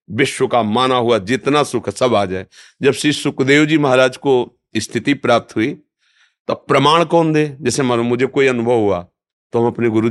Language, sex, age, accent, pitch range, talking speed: Hindi, male, 40-59, native, 120-150 Hz, 195 wpm